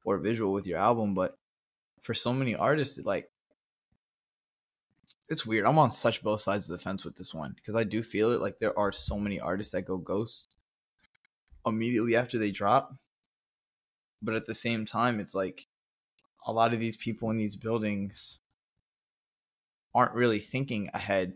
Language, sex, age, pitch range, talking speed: English, male, 20-39, 100-120 Hz, 170 wpm